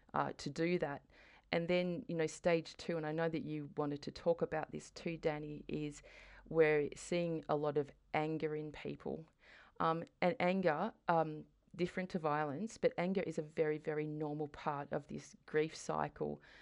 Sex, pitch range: female, 145-160 Hz